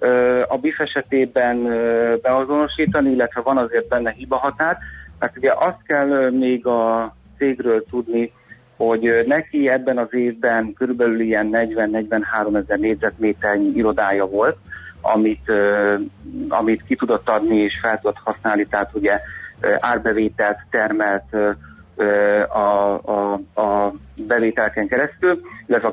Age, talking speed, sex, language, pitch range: 30-49, 120 wpm, male, Hungarian, 105-125 Hz